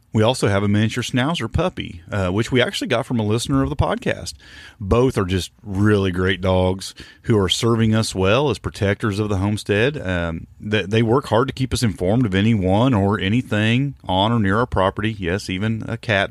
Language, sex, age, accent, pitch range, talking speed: English, male, 40-59, American, 95-115 Hz, 205 wpm